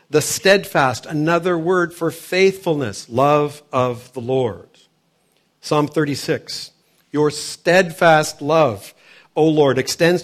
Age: 50-69